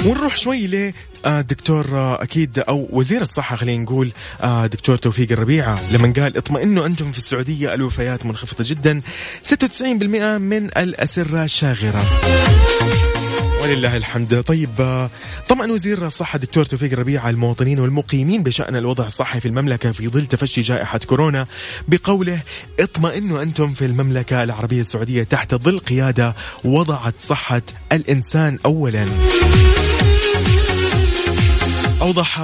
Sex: male